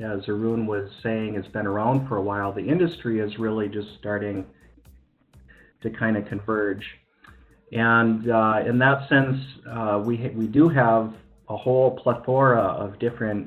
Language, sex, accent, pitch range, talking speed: English, male, American, 100-115 Hz, 160 wpm